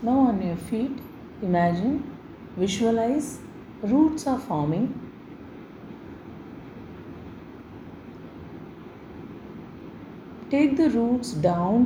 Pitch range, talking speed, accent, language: 155-205 Hz, 65 wpm, native, Tamil